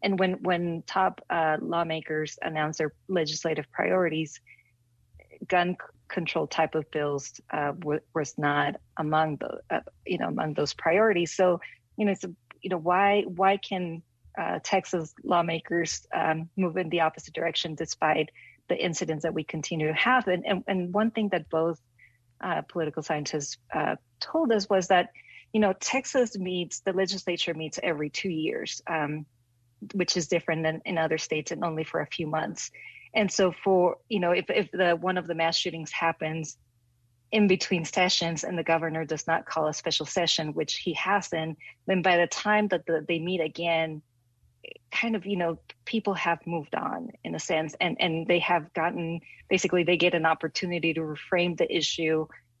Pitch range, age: 155-185 Hz, 40-59